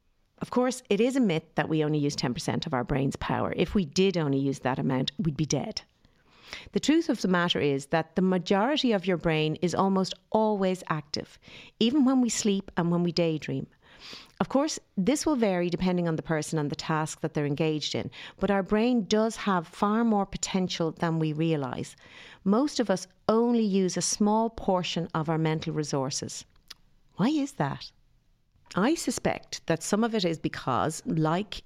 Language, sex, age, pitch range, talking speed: English, female, 50-69, 155-210 Hz, 190 wpm